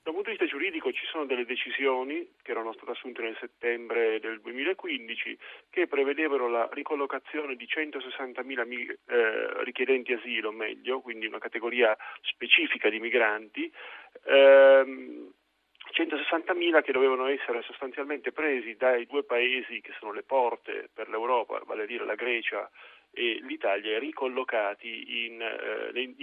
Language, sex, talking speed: Italian, male, 135 wpm